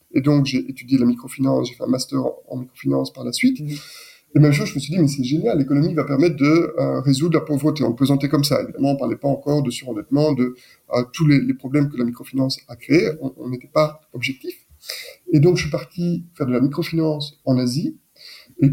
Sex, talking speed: male, 235 wpm